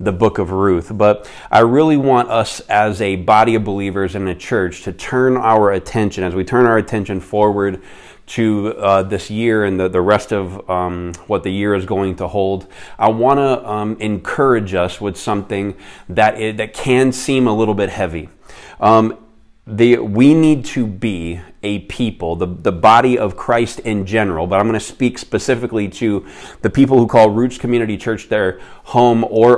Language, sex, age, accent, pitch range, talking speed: English, male, 30-49, American, 95-115 Hz, 185 wpm